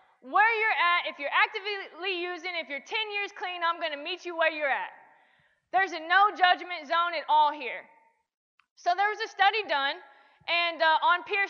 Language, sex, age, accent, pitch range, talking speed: English, female, 20-39, American, 310-410 Hz, 200 wpm